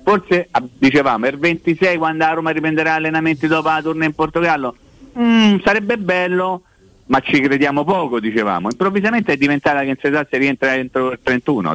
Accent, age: native, 50-69